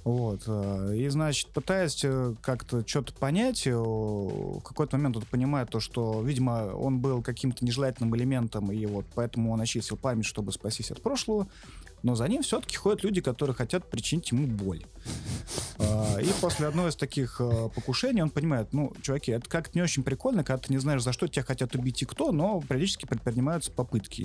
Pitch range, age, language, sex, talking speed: 115-150 Hz, 30-49, Russian, male, 175 wpm